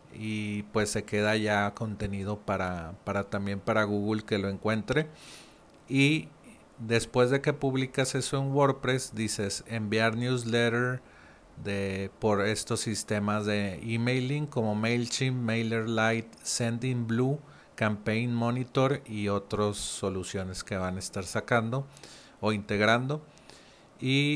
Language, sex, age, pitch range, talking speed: Spanish, male, 40-59, 105-125 Hz, 120 wpm